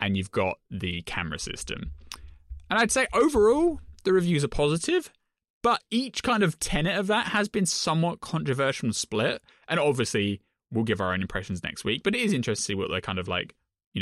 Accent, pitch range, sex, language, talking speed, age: British, 100-155 Hz, male, English, 205 wpm, 20-39